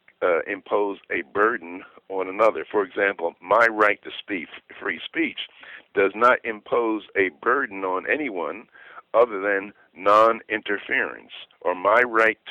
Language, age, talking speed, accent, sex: English, 50-69, 130 wpm, American, male